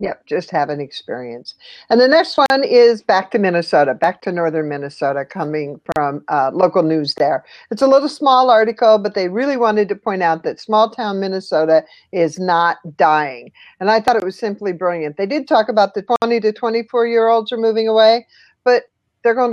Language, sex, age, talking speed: English, female, 50-69, 200 wpm